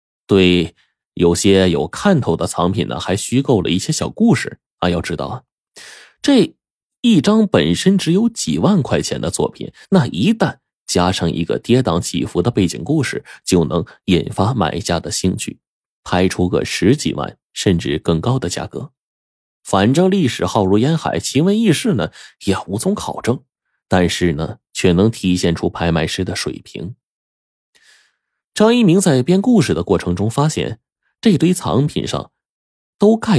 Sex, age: male, 20-39